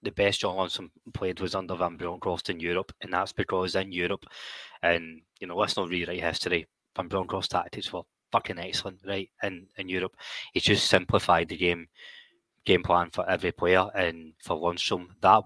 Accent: British